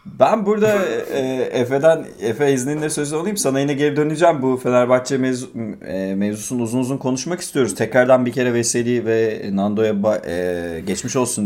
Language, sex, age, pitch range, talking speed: Turkish, male, 30-49, 115-155 Hz, 170 wpm